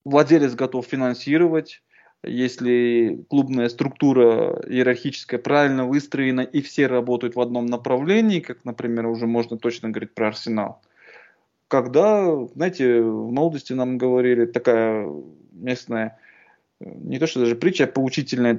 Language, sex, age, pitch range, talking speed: Russian, male, 20-39, 125-165 Hz, 125 wpm